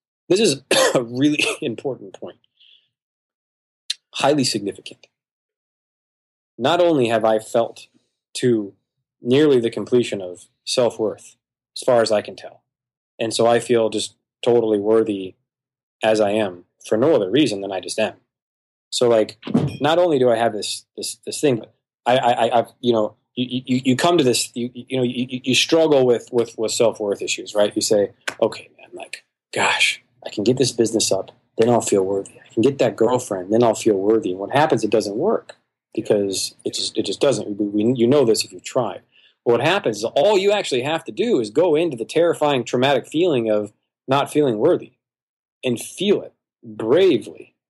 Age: 20-39